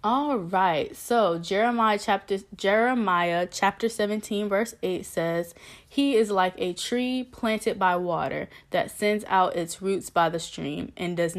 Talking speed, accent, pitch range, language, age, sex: 155 wpm, American, 175-215 Hz, English, 20-39, female